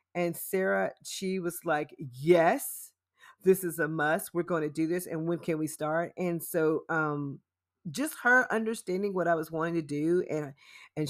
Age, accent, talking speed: 40-59, American, 185 wpm